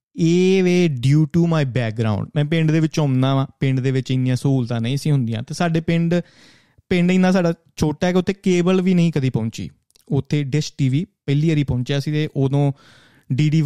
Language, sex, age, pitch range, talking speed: Punjabi, male, 30-49, 125-160 Hz, 190 wpm